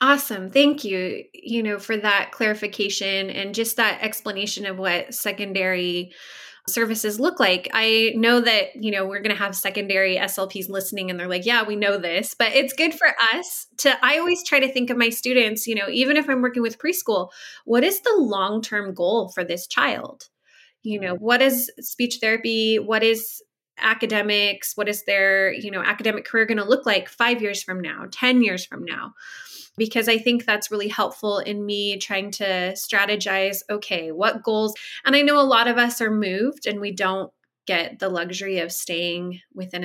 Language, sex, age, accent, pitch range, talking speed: English, female, 20-39, American, 195-240 Hz, 190 wpm